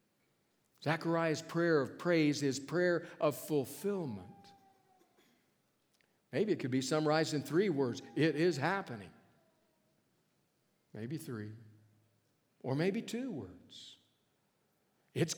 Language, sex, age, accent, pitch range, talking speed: English, male, 60-79, American, 125-170 Hz, 100 wpm